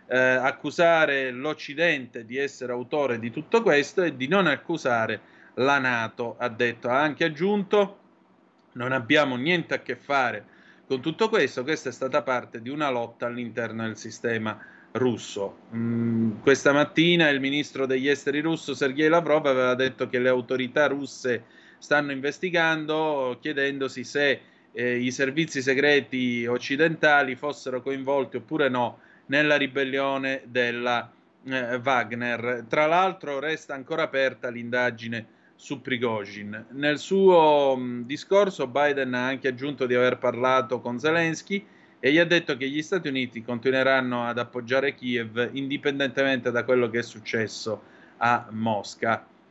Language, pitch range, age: Italian, 125-150 Hz, 30-49